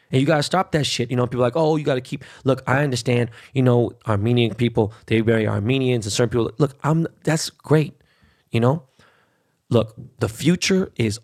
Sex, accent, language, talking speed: male, American, English, 215 wpm